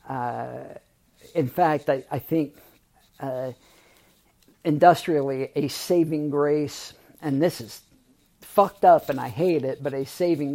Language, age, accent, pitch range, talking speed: English, 50-69, American, 135-170 Hz, 130 wpm